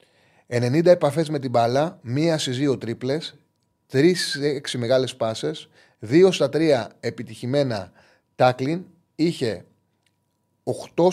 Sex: male